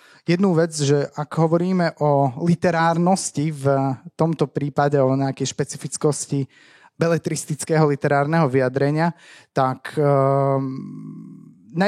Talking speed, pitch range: 90 wpm, 145-175 Hz